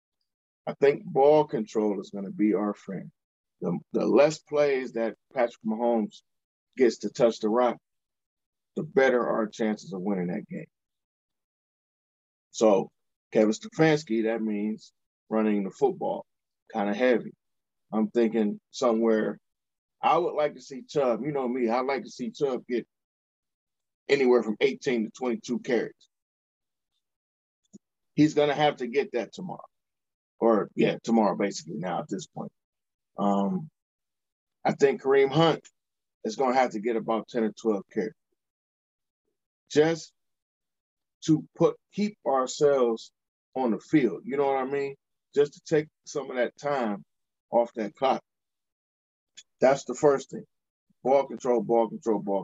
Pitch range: 105-140 Hz